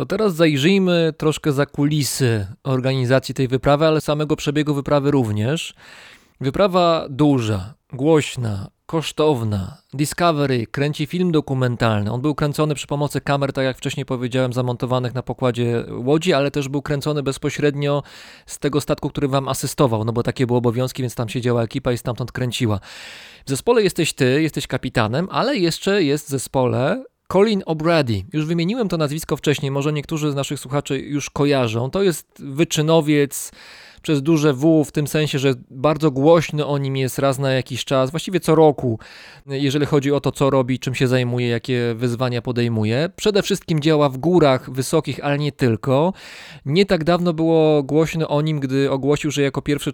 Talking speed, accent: 165 wpm, native